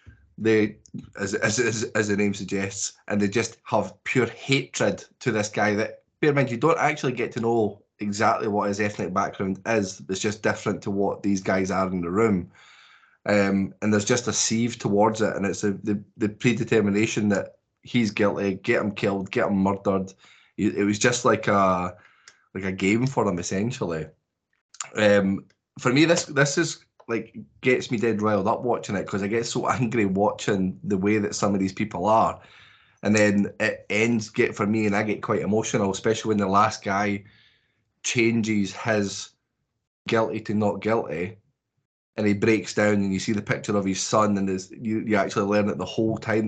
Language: English